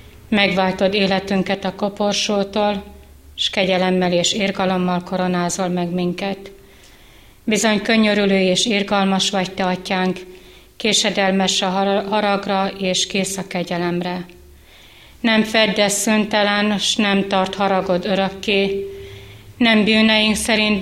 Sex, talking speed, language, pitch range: female, 105 wpm, Hungarian, 185-205 Hz